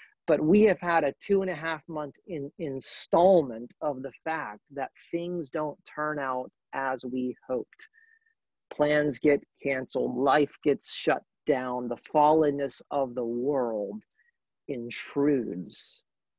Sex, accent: male, American